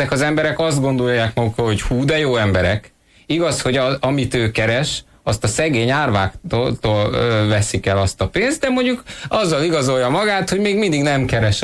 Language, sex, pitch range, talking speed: Hungarian, male, 110-155 Hz, 185 wpm